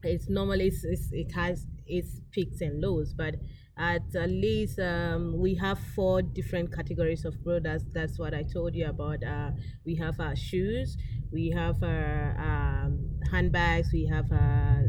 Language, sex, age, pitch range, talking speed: English, female, 30-49, 120-175 Hz, 155 wpm